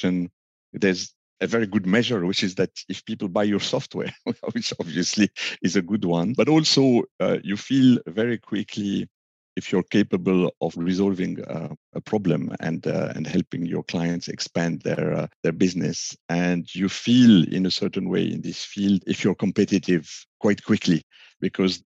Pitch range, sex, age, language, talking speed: 90-105 Hz, male, 50-69, English, 165 wpm